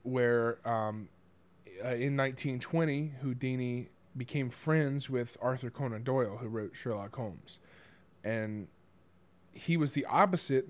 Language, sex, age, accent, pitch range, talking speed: English, male, 20-39, American, 115-135 Hz, 110 wpm